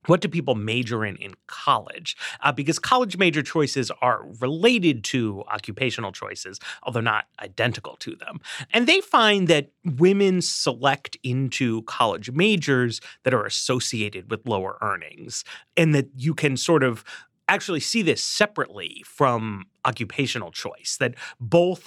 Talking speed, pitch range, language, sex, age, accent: 145 wpm, 105-165 Hz, English, male, 30-49, American